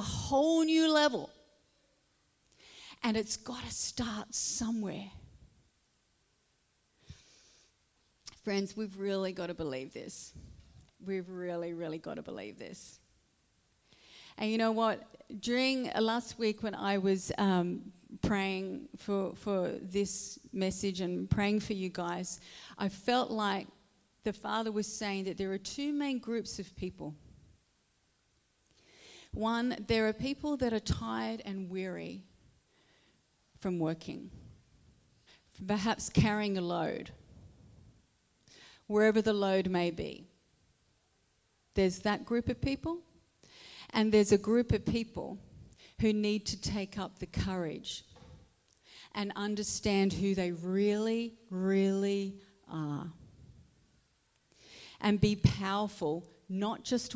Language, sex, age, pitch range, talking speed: English, female, 40-59, 180-220 Hz, 115 wpm